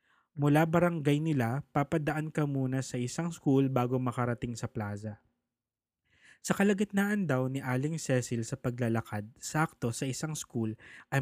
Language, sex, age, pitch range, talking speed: English, male, 20-39, 120-145 Hz, 140 wpm